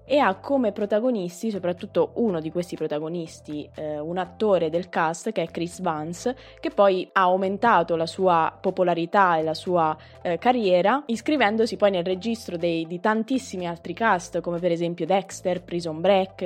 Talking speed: 160 wpm